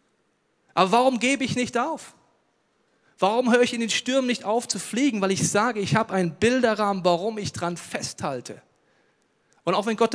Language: German